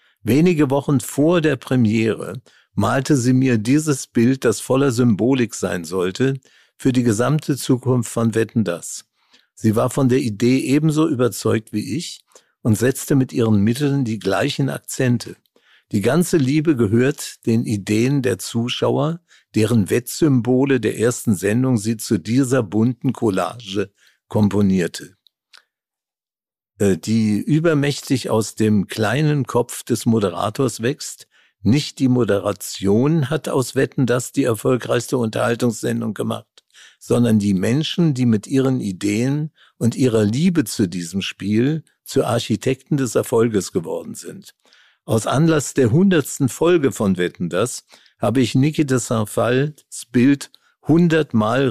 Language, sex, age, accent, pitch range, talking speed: German, male, 50-69, German, 110-140 Hz, 130 wpm